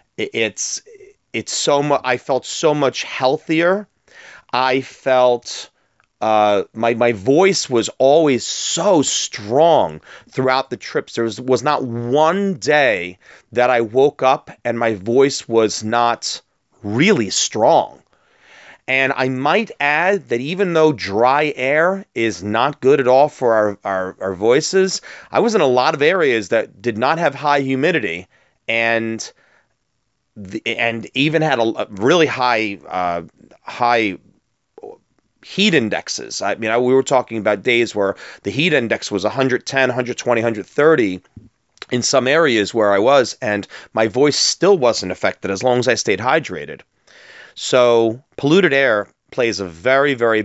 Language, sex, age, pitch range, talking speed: English, male, 30-49, 110-140 Hz, 150 wpm